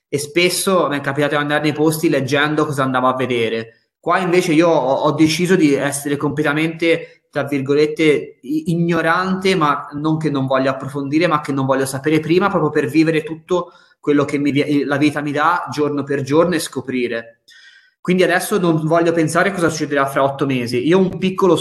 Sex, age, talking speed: male, 20-39, 185 wpm